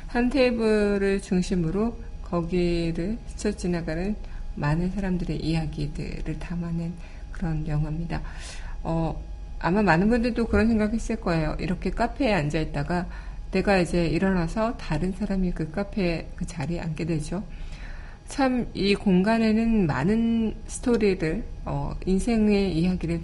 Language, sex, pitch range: Korean, female, 160-200 Hz